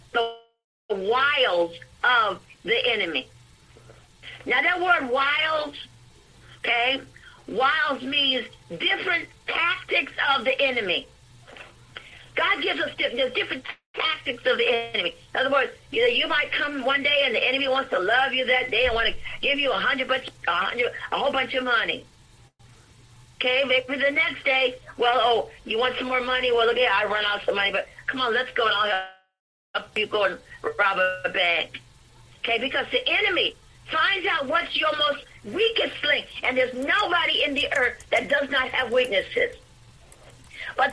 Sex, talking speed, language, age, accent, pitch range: female, 165 wpm, English, 50-69, American, 250-375 Hz